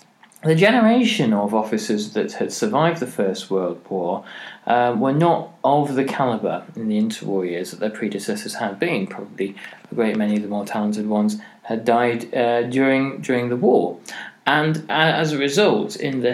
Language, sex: English, male